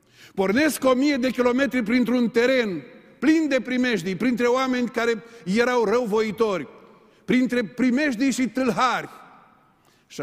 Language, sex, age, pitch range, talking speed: Romanian, male, 50-69, 195-260 Hz, 115 wpm